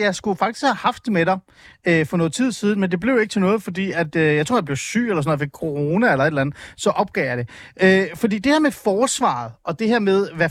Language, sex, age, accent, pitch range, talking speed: Danish, male, 30-49, native, 150-210 Hz, 290 wpm